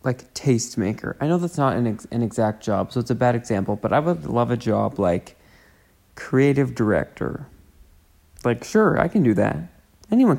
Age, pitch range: 20-39, 105-130 Hz